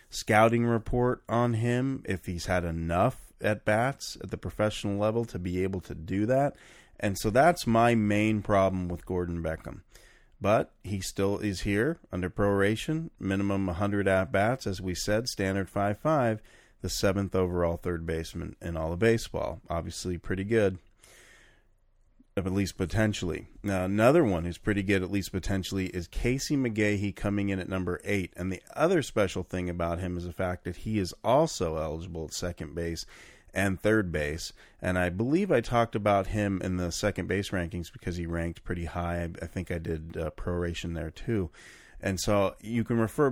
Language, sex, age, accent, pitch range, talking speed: English, male, 40-59, American, 90-105 Hz, 175 wpm